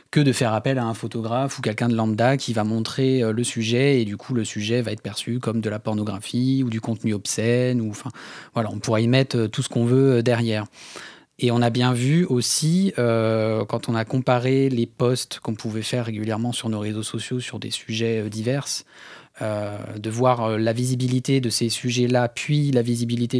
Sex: male